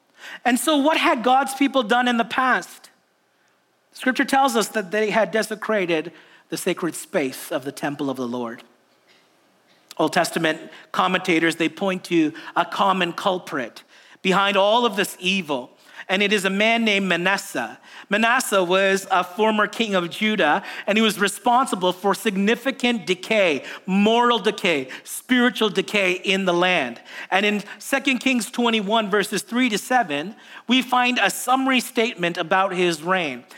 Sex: male